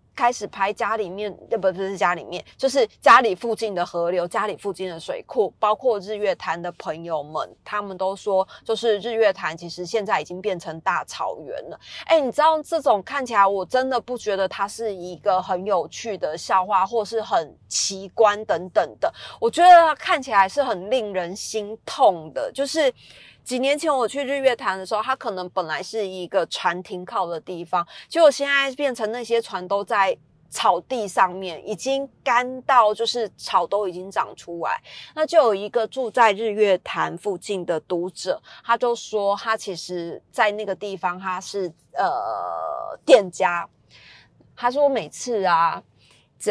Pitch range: 185-235 Hz